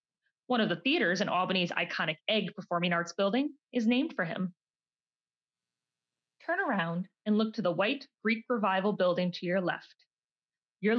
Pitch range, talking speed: 170-225 Hz, 160 wpm